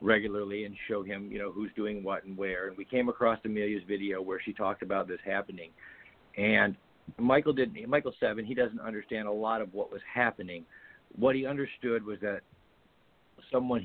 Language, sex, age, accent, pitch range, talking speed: English, male, 50-69, American, 100-125 Hz, 185 wpm